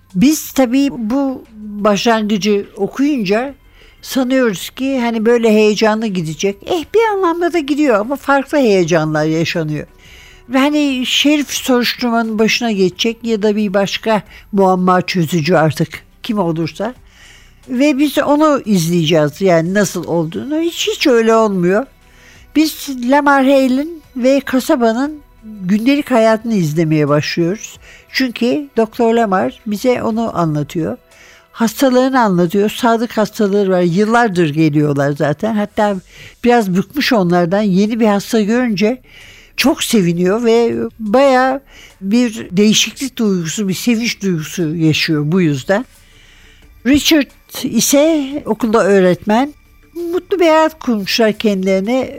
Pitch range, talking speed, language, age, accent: 190-260 Hz, 115 wpm, Turkish, 60-79, native